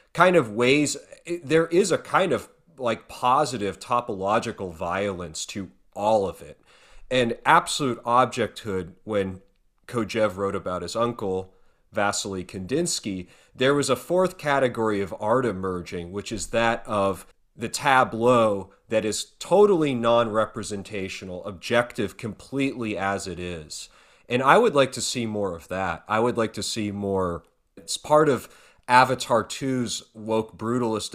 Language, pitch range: English, 100-120 Hz